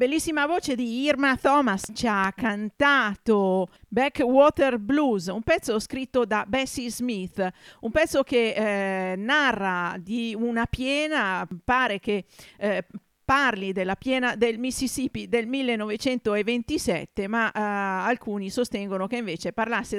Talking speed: 115 wpm